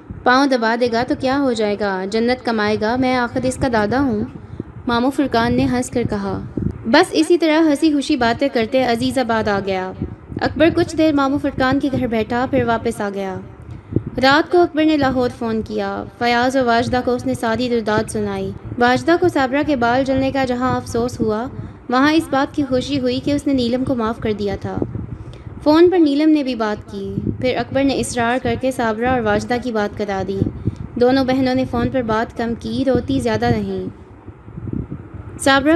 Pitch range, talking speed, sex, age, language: 215-270 Hz, 200 wpm, female, 20-39, Urdu